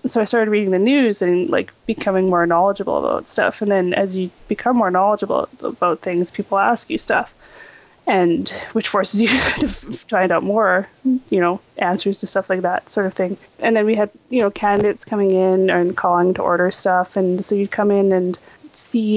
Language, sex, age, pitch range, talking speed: English, female, 20-39, 180-215 Hz, 205 wpm